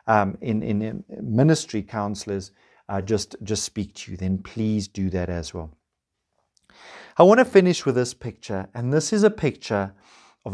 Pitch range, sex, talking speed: 105-145 Hz, male, 175 wpm